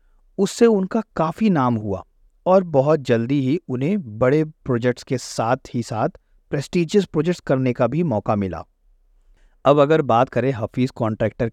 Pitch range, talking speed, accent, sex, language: 105-135 Hz, 150 wpm, native, male, Hindi